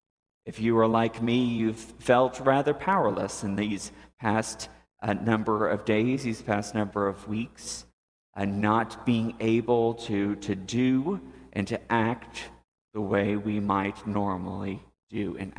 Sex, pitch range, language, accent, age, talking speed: male, 100-120 Hz, English, American, 50-69, 150 wpm